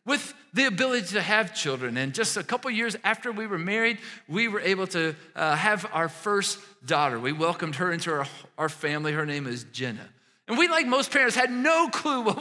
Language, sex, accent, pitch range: English, male, American, 180-235 Hz